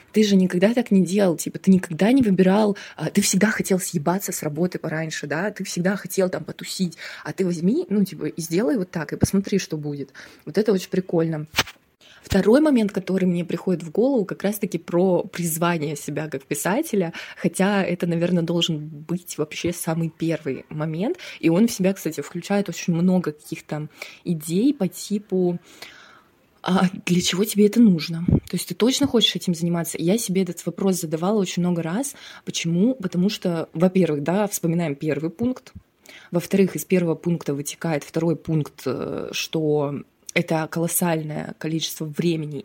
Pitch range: 160-195 Hz